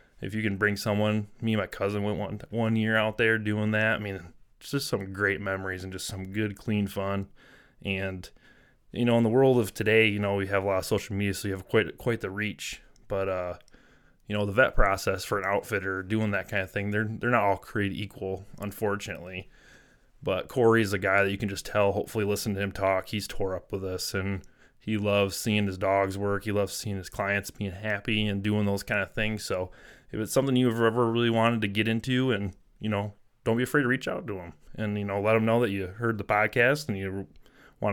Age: 20-39